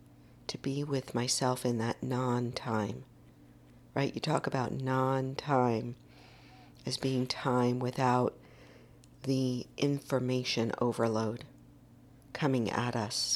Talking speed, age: 100 wpm, 50-69